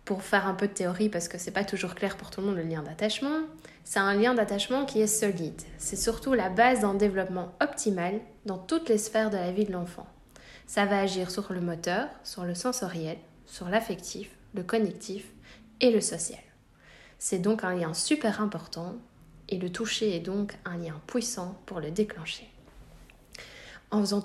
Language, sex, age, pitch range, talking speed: French, female, 20-39, 185-220 Hz, 190 wpm